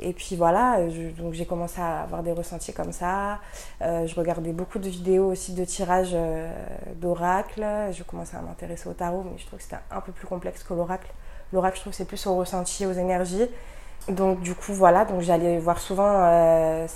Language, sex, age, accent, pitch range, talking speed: French, female, 20-39, French, 165-185 Hz, 210 wpm